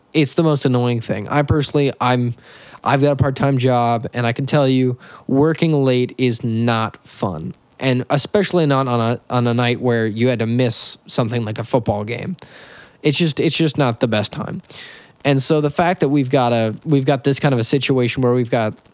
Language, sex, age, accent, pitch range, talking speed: English, male, 10-29, American, 125-150 Hz, 210 wpm